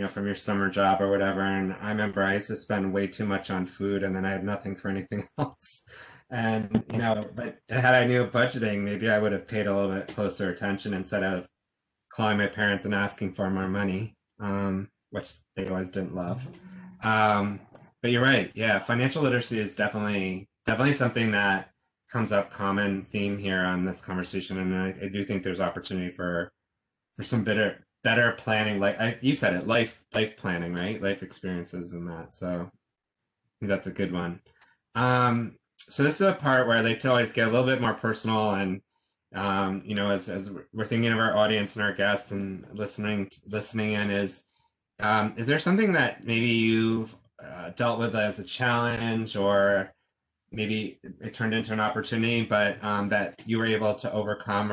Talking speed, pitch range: 195 wpm, 95-115 Hz